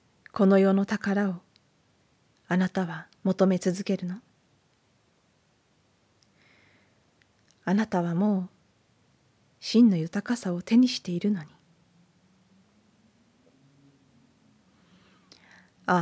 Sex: female